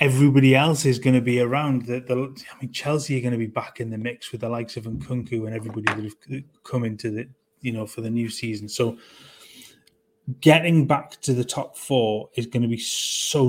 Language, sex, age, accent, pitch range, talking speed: English, male, 20-39, British, 115-135 Hz, 225 wpm